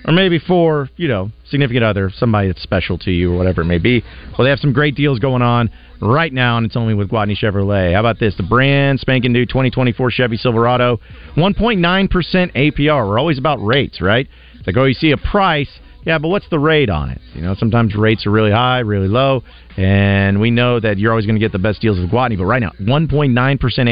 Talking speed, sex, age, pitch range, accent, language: 230 wpm, male, 40-59, 100-140 Hz, American, English